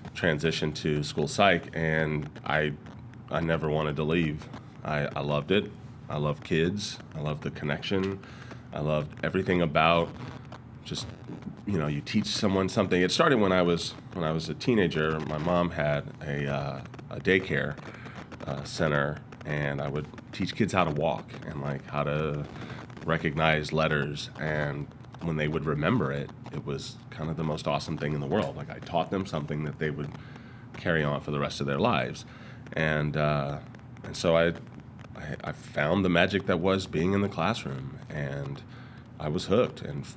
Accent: American